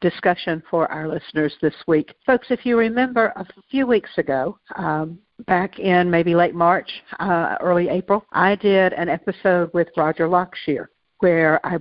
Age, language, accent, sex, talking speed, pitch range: 60-79, English, American, female, 165 wpm, 155-185 Hz